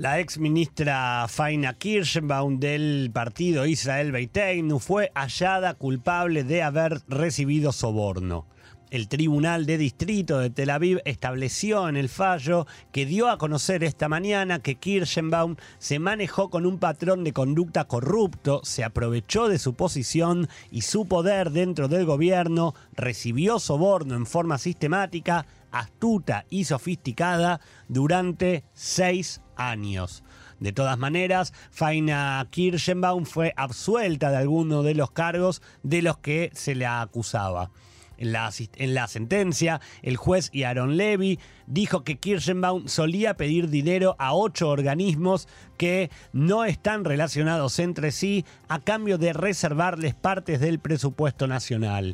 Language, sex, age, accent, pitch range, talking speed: Spanish, male, 30-49, Argentinian, 135-180 Hz, 135 wpm